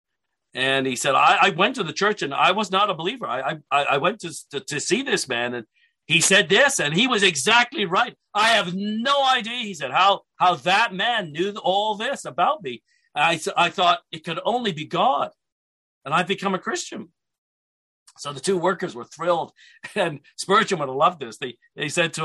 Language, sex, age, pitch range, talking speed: English, male, 50-69, 155-225 Hz, 210 wpm